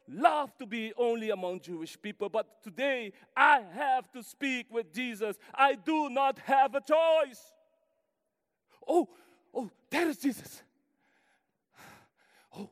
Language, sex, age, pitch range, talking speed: English, male, 40-59, 225-315 Hz, 125 wpm